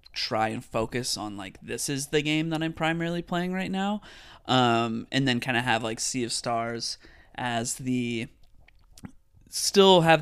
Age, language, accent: 30-49, English, American